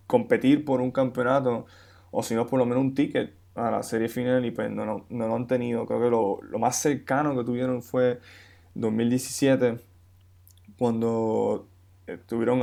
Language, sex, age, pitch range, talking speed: Spanish, male, 20-39, 105-125 Hz, 170 wpm